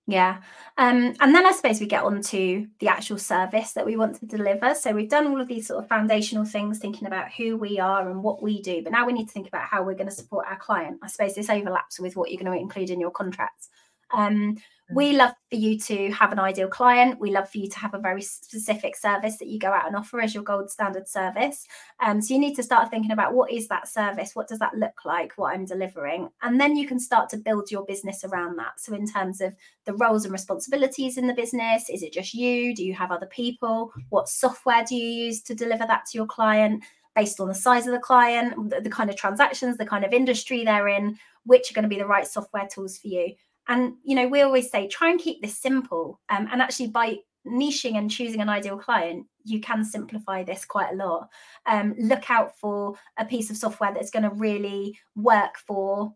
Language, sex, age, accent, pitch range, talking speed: English, female, 20-39, British, 200-245 Hz, 245 wpm